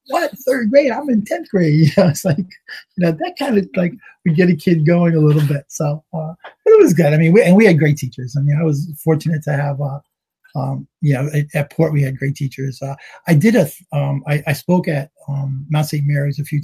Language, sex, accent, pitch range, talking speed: English, male, American, 140-160 Hz, 265 wpm